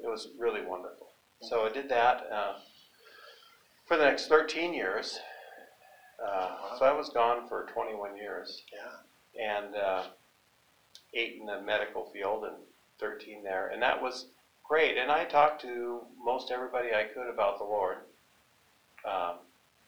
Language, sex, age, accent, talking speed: English, male, 50-69, American, 145 wpm